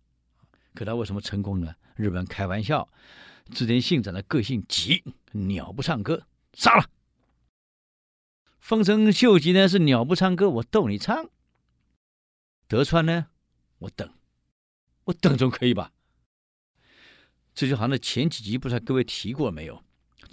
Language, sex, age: Chinese, male, 50-69